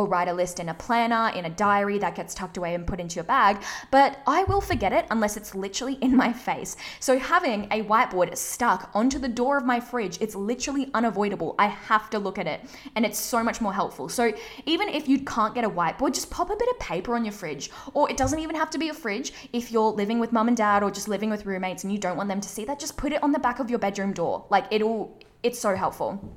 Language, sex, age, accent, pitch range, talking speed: English, female, 10-29, Australian, 200-270 Hz, 265 wpm